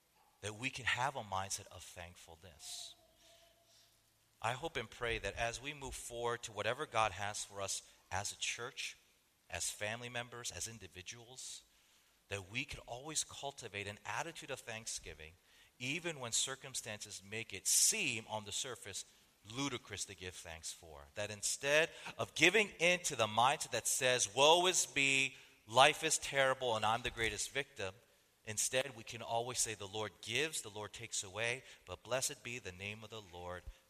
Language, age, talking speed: English, 40-59, 170 wpm